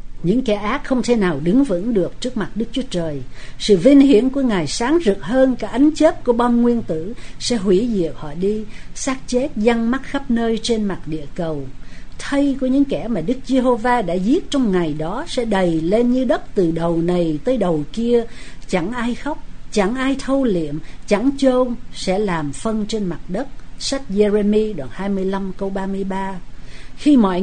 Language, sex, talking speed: Vietnamese, female, 195 wpm